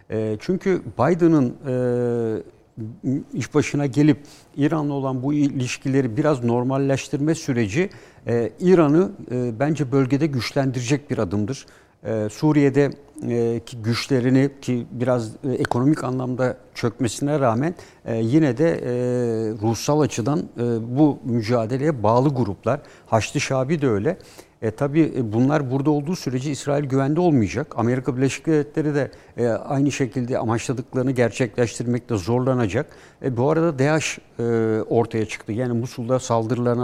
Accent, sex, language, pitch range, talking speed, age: native, male, Turkish, 115-145 Hz, 105 wpm, 60-79